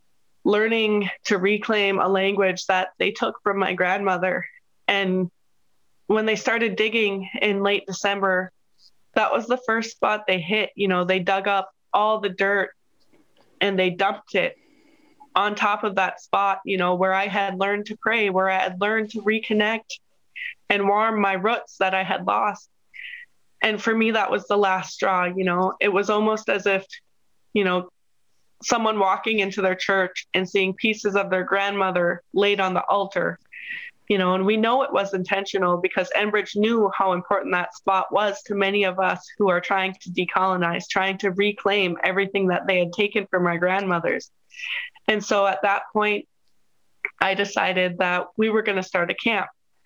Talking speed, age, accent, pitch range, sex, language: 175 wpm, 20-39, American, 190-215 Hz, female, English